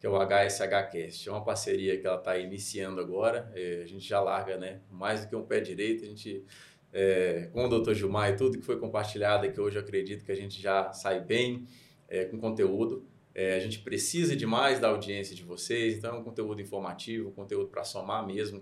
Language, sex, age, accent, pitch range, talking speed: Portuguese, male, 20-39, Brazilian, 100-130 Hz, 205 wpm